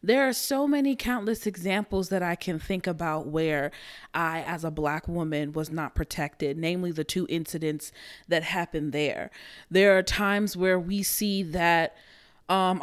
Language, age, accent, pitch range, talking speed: English, 20-39, American, 180-235 Hz, 165 wpm